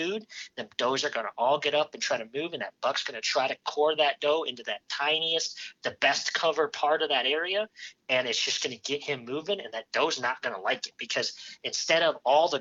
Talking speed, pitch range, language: 250 wpm, 125-155 Hz, English